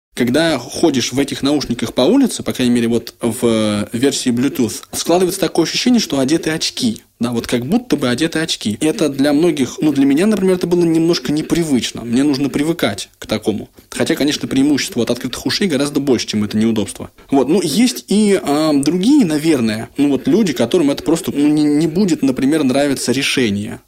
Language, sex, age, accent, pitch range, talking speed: Russian, male, 20-39, native, 115-170 Hz, 185 wpm